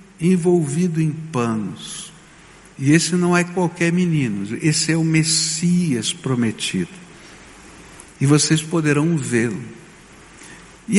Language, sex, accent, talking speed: Portuguese, male, Brazilian, 105 wpm